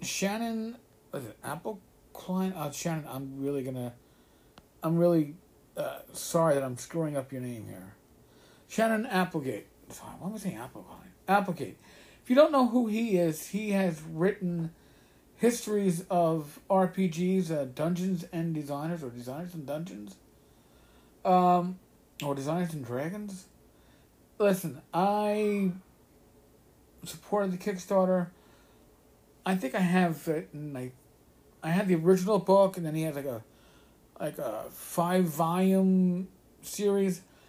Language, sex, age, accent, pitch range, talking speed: English, male, 50-69, American, 145-190 Hz, 135 wpm